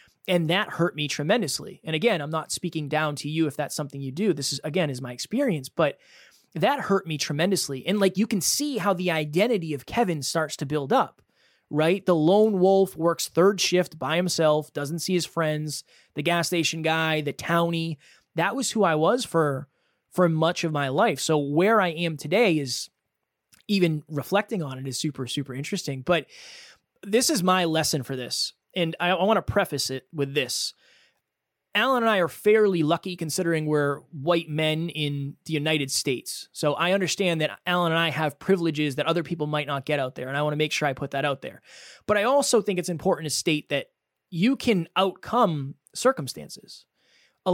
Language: English